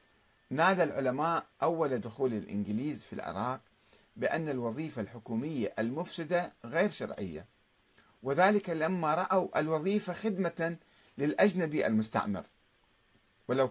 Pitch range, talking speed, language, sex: 125-180 Hz, 90 wpm, Arabic, male